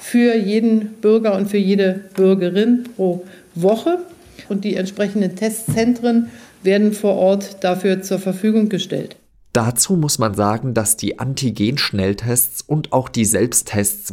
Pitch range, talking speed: 100-155 Hz, 130 wpm